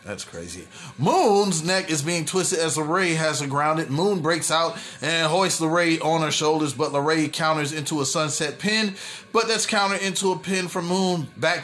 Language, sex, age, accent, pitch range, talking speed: English, male, 30-49, American, 155-190 Hz, 185 wpm